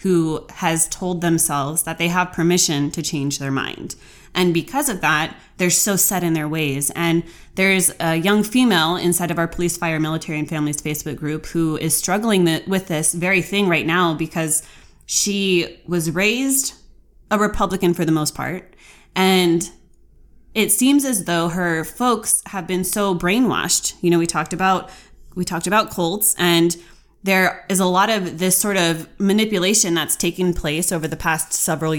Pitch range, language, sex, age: 160-190 Hz, English, female, 20-39